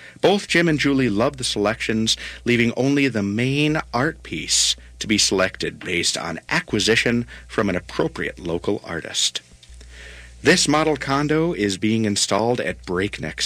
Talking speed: 145 wpm